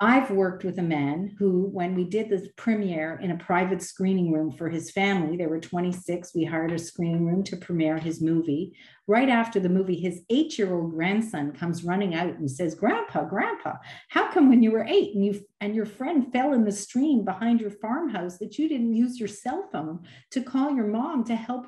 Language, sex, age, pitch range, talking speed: English, female, 50-69, 170-230 Hz, 210 wpm